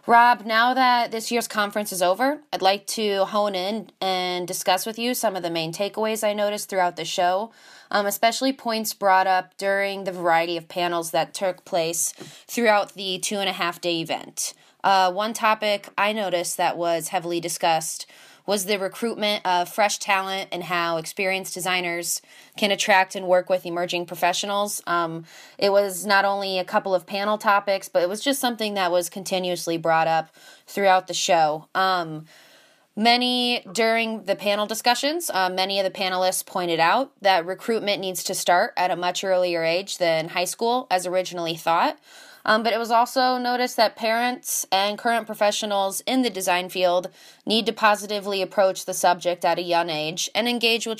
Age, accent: 20-39, American